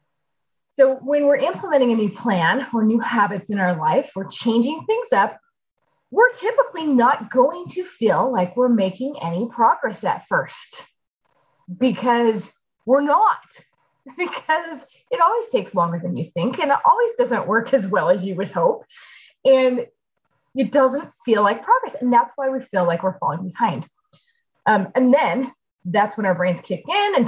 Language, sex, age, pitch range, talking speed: English, female, 20-39, 205-335 Hz, 170 wpm